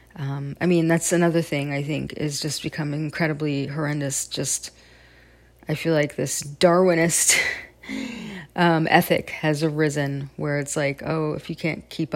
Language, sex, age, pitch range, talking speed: English, female, 30-49, 145-170 Hz, 170 wpm